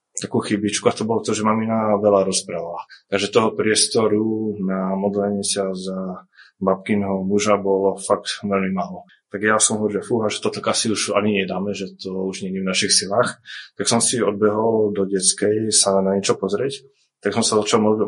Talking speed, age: 195 wpm, 20-39